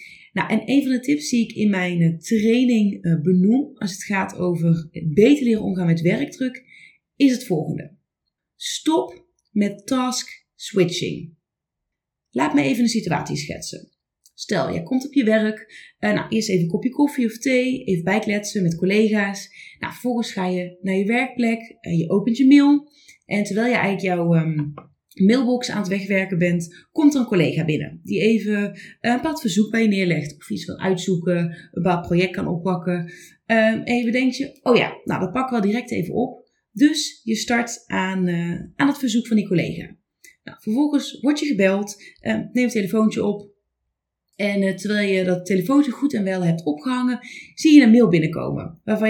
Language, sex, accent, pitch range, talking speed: Dutch, female, Dutch, 185-250 Hz, 190 wpm